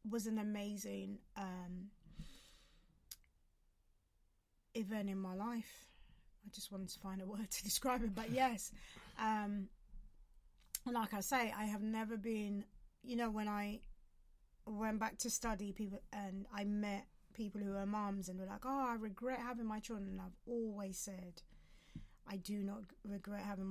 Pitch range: 190-220 Hz